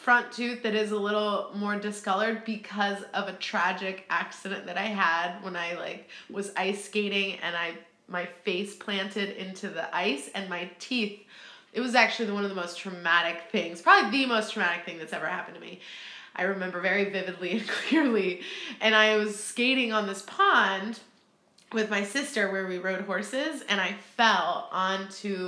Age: 20-39